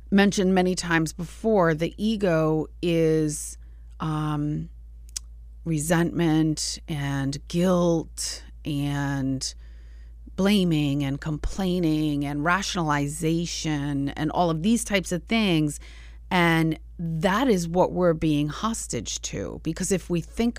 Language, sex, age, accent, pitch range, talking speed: English, female, 30-49, American, 140-185 Hz, 105 wpm